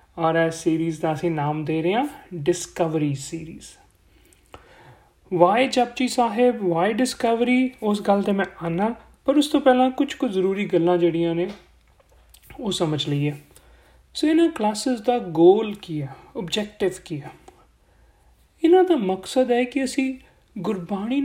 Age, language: 30-49, Punjabi